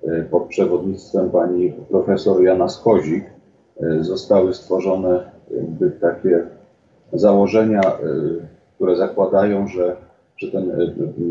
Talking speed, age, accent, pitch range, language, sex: 85 wpm, 40-59, native, 85-100 Hz, Polish, male